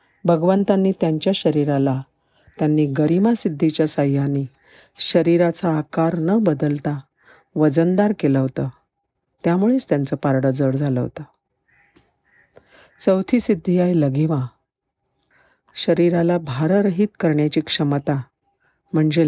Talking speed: 90 wpm